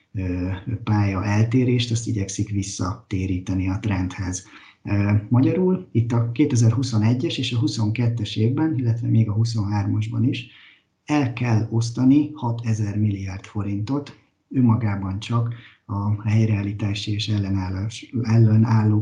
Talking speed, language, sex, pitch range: 105 wpm, Hungarian, male, 105-120 Hz